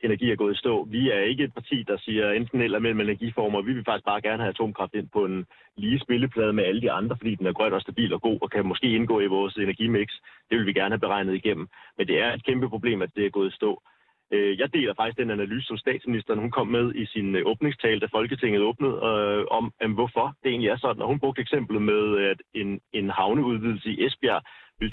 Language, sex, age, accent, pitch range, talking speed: Danish, male, 30-49, native, 105-125 Hz, 240 wpm